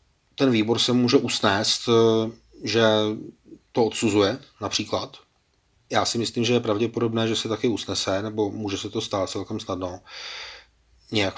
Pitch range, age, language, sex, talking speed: 105-120 Hz, 30-49, Czech, male, 140 wpm